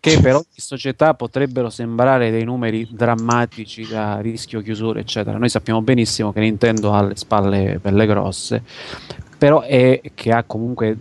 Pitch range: 105-125 Hz